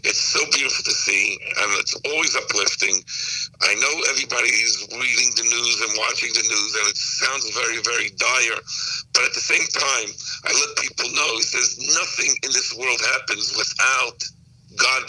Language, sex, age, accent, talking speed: English, male, 60-79, American, 170 wpm